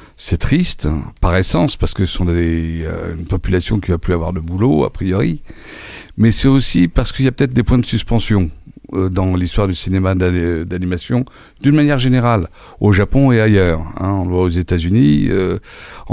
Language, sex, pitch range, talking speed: French, male, 90-120 Hz, 195 wpm